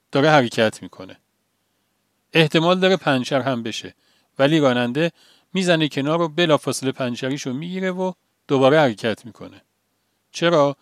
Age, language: 40-59, Persian